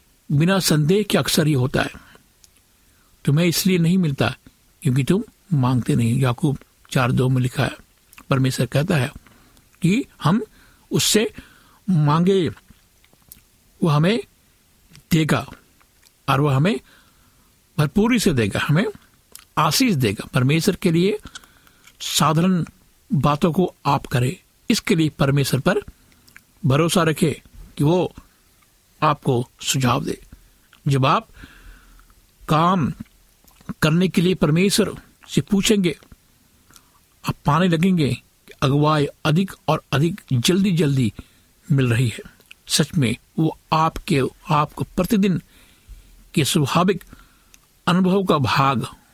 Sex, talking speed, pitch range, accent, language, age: male, 110 wpm, 135-185 Hz, native, Hindi, 60-79